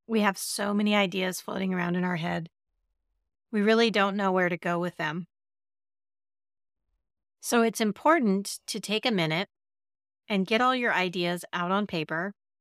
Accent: American